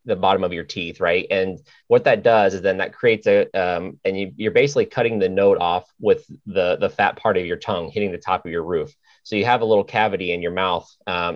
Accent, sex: American, male